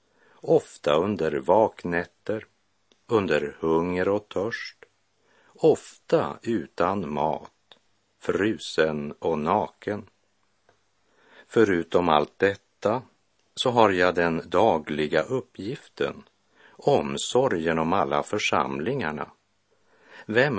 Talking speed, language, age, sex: 80 wpm, Swedish, 60-79, male